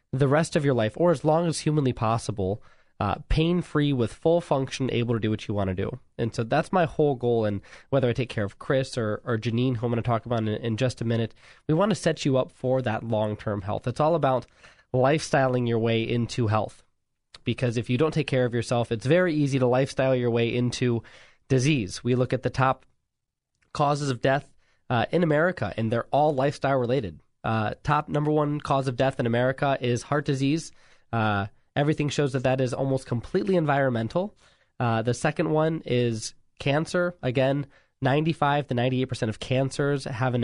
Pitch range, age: 115-145 Hz, 20-39